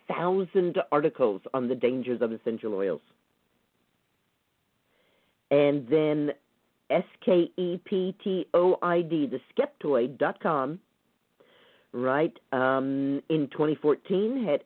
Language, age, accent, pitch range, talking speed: English, 50-69, American, 125-170 Hz, 70 wpm